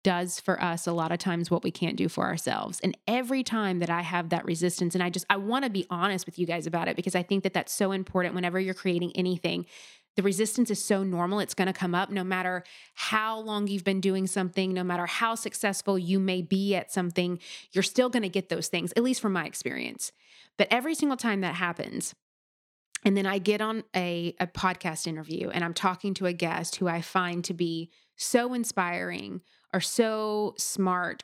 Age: 20-39